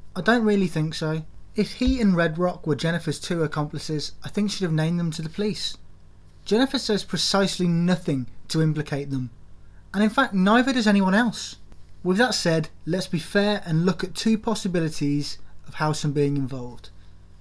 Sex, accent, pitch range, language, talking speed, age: male, British, 140-195 Hz, English, 180 wpm, 20-39